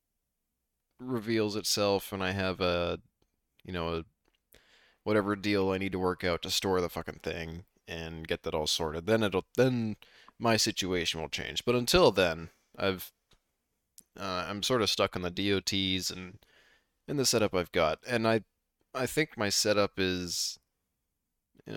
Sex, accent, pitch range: male, American, 90-105 Hz